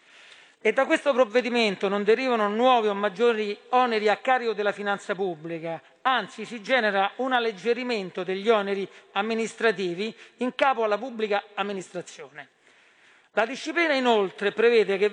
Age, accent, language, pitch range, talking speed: 40-59, native, Italian, 200-245 Hz, 130 wpm